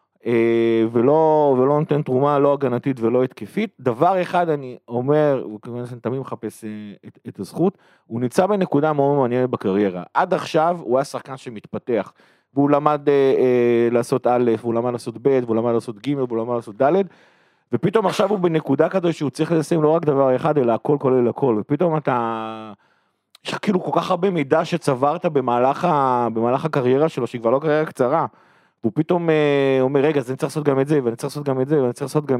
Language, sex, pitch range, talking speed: Hebrew, male, 120-150 Hz, 175 wpm